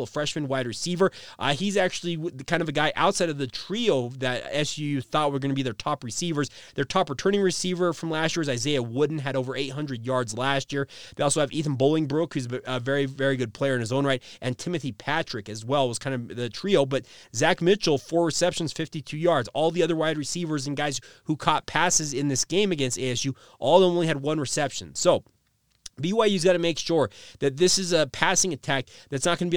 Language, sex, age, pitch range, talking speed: English, male, 30-49, 135-170 Hz, 220 wpm